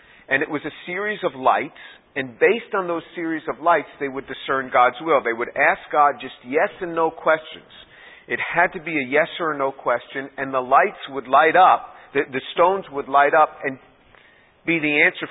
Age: 50-69